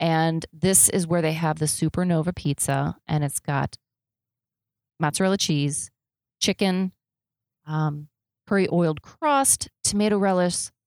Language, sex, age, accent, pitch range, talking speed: English, female, 30-49, American, 140-175 Hz, 115 wpm